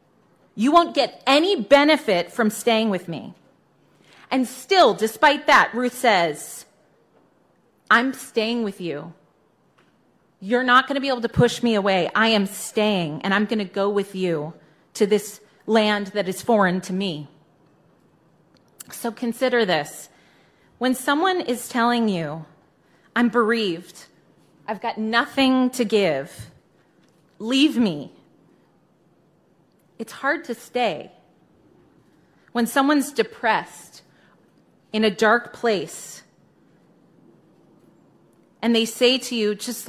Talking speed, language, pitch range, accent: 120 wpm, English, 180-235 Hz, American